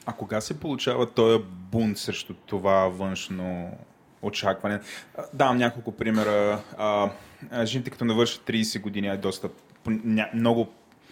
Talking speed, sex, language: 110 wpm, male, Bulgarian